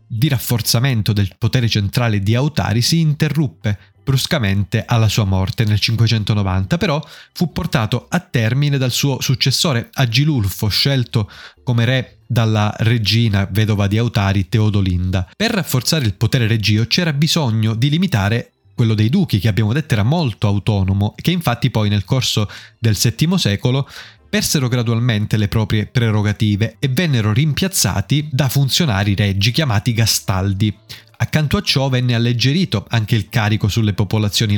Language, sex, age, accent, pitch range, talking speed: Italian, male, 20-39, native, 105-130 Hz, 140 wpm